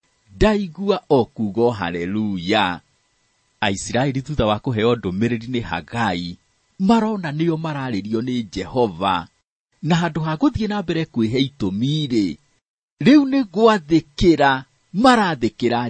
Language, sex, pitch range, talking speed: English, male, 110-155 Hz, 100 wpm